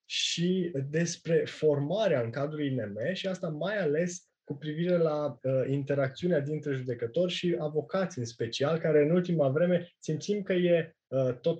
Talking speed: 155 wpm